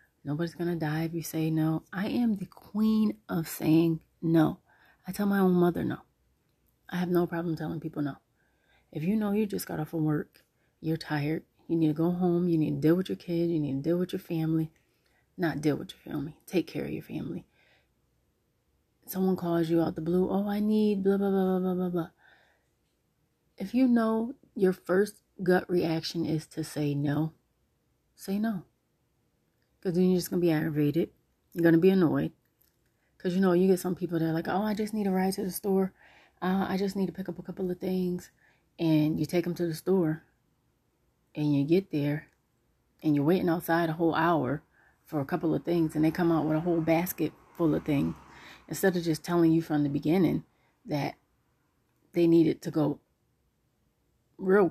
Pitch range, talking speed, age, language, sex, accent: 155-185 Hz, 205 wpm, 30-49, English, female, American